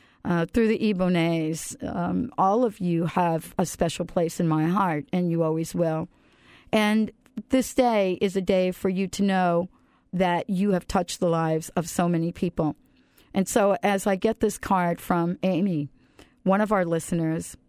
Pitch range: 175-205 Hz